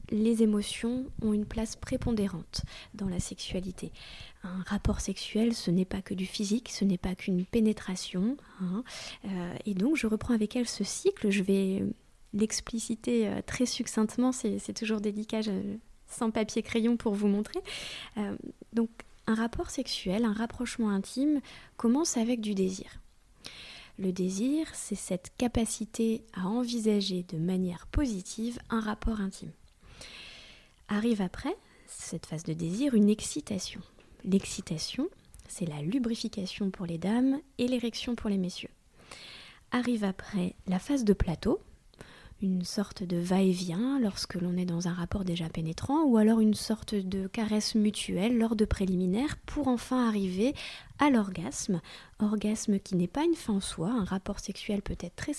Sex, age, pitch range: female, 20-39, 190-235 Hz